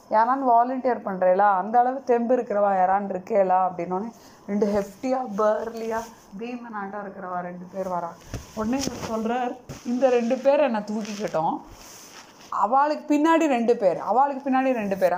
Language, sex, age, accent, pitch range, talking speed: Tamil, female, 30-49, native, 200-260 Hz, 130 wpm